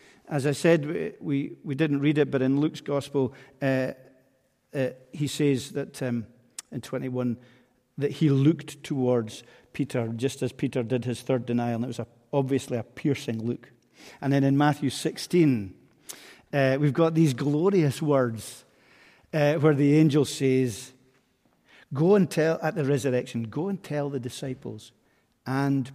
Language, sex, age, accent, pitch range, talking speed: English, male, 50-69, British, 125-150 Hz, 160 wpm